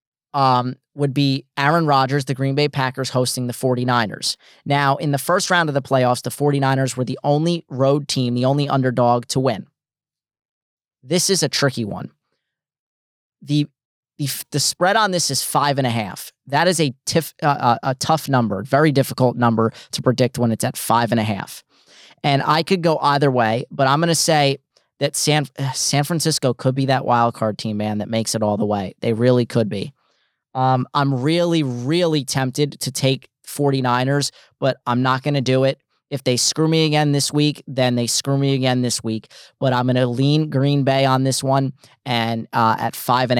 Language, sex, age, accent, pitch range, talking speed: English, male, 30-49, American, 125-150 Hz, 200 wpm